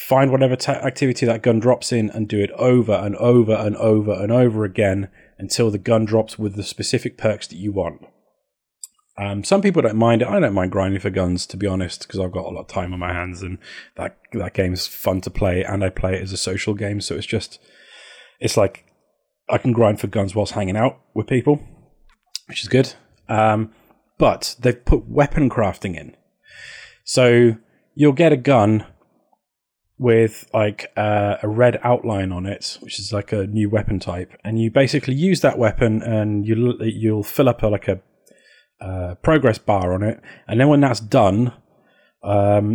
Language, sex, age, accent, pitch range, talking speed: English, male, 30-49, British, 100-125 Hz, 200 wpm